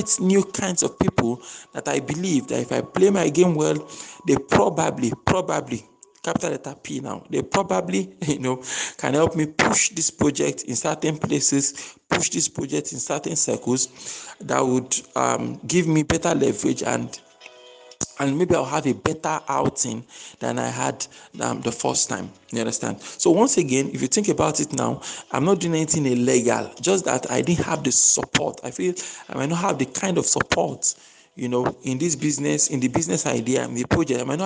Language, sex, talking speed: English, male, 190 wpm